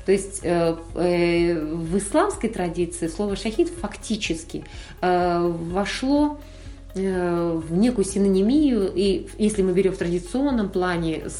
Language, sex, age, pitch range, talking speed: Russian, female, 30-49, 180-240 Hz, 100 wpm